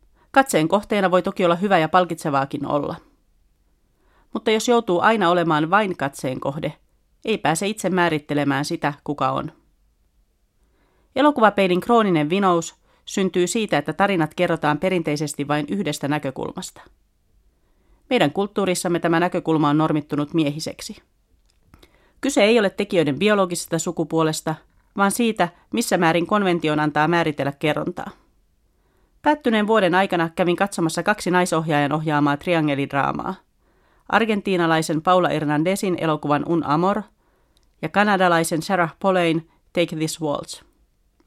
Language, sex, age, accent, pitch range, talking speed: Finnish, female, 40-59, native, 155-195 Hz, 115 wpm